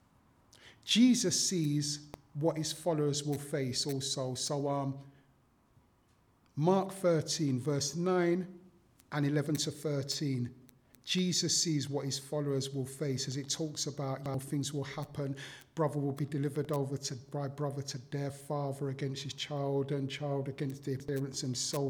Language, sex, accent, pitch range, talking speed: English, male, British, 135-155 Hz, 145 wpm